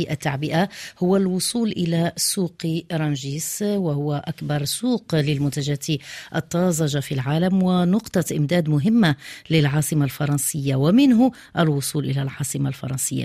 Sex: female